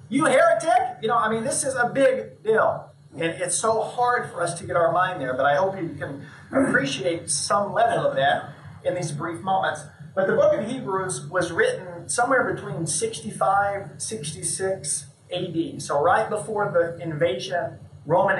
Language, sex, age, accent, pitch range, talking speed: English, male, 40-59, American, 145-185 Hz, 175 wpm